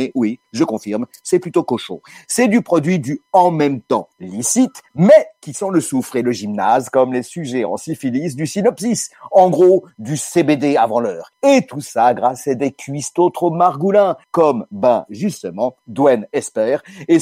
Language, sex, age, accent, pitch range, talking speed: French, male, 50-69, French, 135-180 Hz, 175 wpm